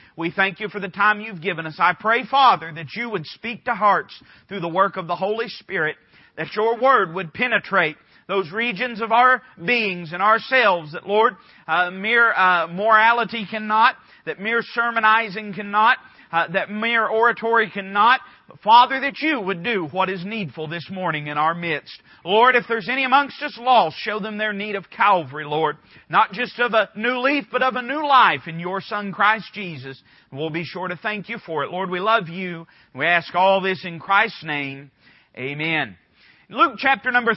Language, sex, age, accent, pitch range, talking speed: English, male, 40-59, American, 185-230 Hz, 190 wpm